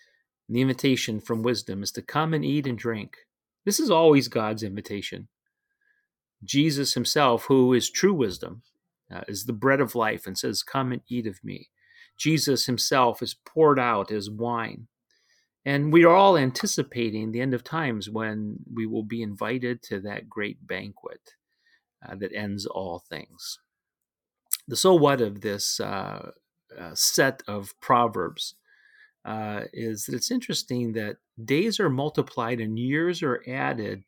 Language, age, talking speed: English, 40-59, 155 wpm